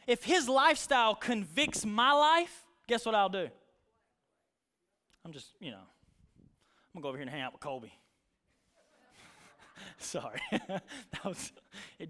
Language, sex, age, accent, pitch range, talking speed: English, male, 20-39, American, 200-285 Hz, 145 wpm